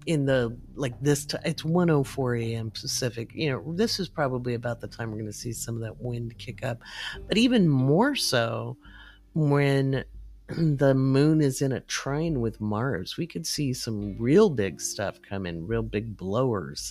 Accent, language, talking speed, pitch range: American, English, 175 wpm, 110-150 Hz